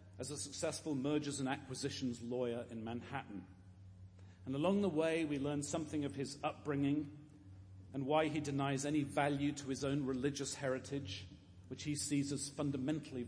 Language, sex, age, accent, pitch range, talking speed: English, male, 40-59, British, 95-140 Hz, 160 wpm